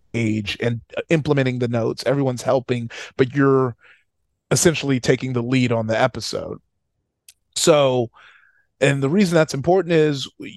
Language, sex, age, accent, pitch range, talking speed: English, male, 30-49, American, 115-140 Hz, 130 wpm